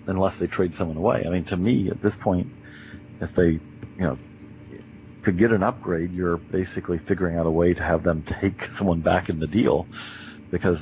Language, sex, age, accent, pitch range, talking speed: English, male, 50-69, American, 85-100 Hz, 200 wpm